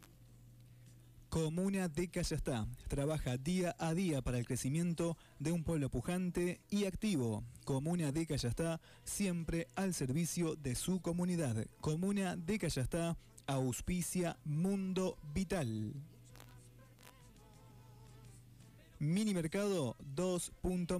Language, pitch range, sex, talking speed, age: Spanish, 125-170 Hz, male, 90 wpm, 30-49